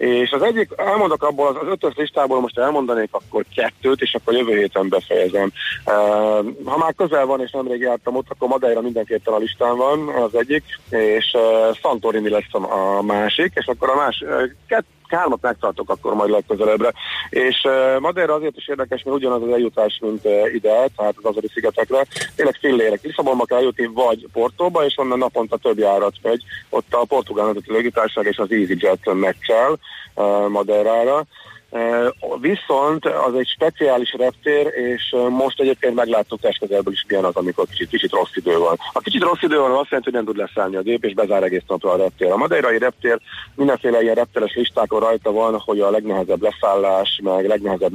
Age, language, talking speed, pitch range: 30-49, Hungarian, 180 wpm, 110-140 Hz